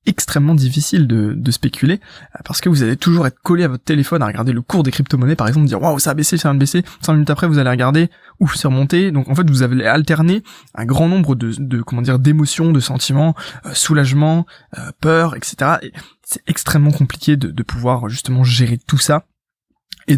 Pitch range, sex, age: 125-150 Hz, male, 20-39